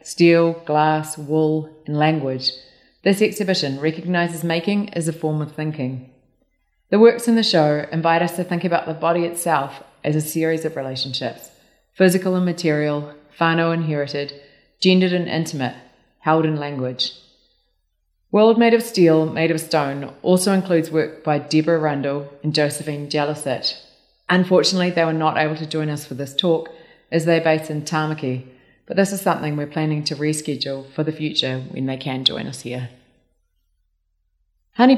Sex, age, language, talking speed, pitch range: female, 30-49, English, 160 wpm, 140-165 Hz